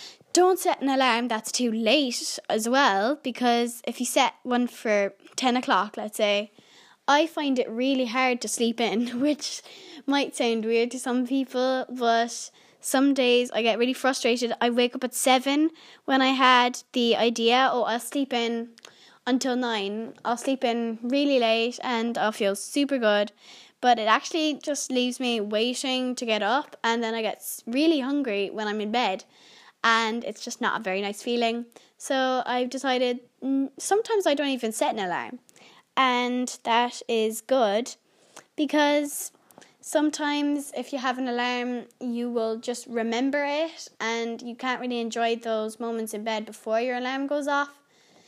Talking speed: 170 wpm